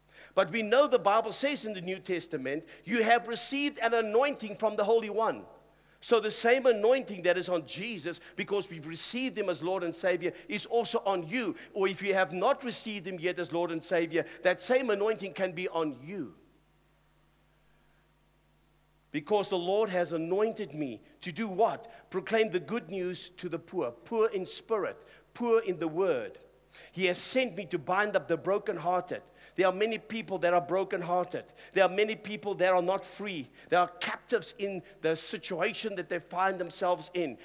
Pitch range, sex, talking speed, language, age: 180-245 Hz, male, 185 wpm, English, 50-69